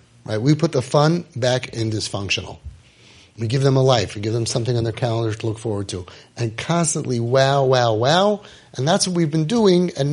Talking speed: 215 wpm